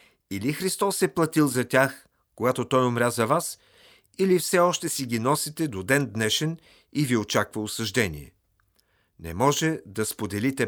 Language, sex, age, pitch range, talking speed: Bulgarian, male, 50-69, 105-145 Hz, 155 wpm